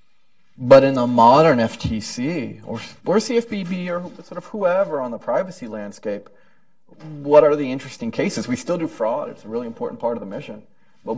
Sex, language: male, English